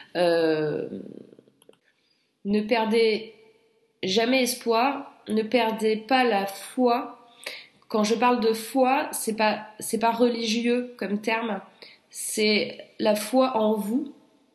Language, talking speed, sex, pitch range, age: French, 110 wpm, female, 210-245 Hz, 20-39